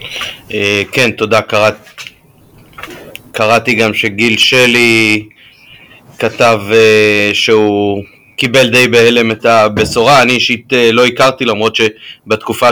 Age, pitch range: 30-49, 110-130 Hz